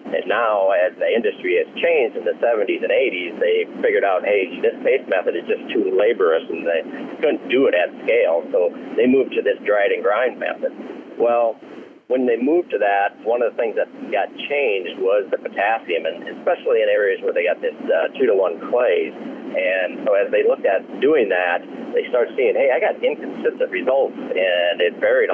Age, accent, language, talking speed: 50-69, American, English, 200 wpm